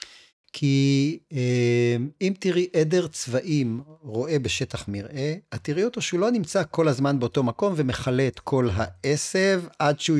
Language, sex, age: Hebrew, male, 40-59